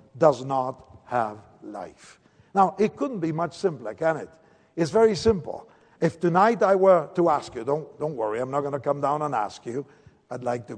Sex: male